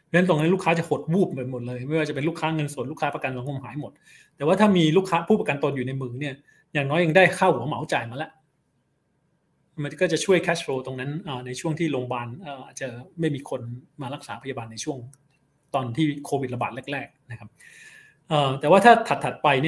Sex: male